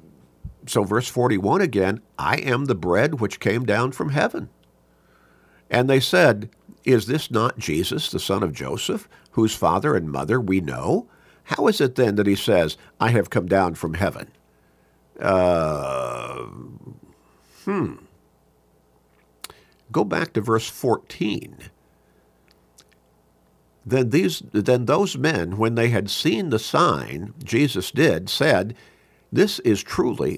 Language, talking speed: English, 130 wpm